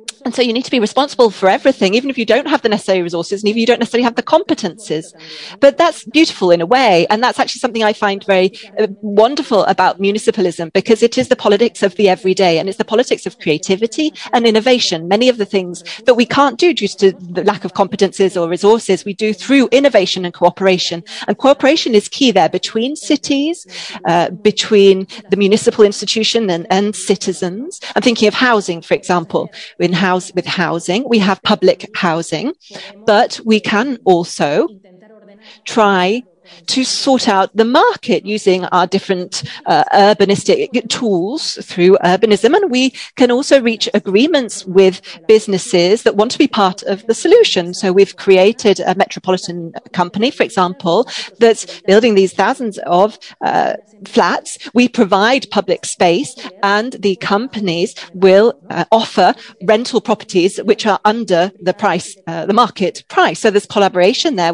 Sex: female